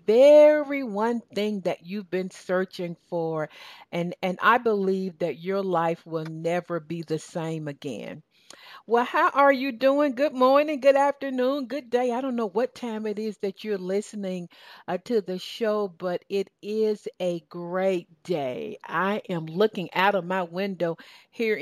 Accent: American